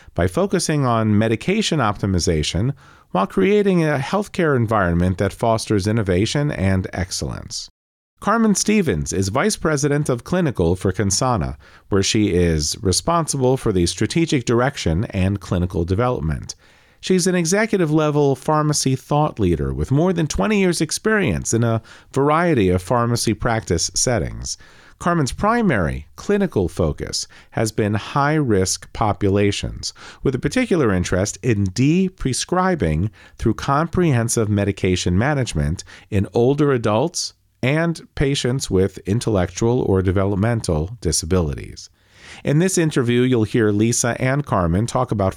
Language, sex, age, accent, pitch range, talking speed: English, male, 40-59, American, 95-150 Hz, 120 wpm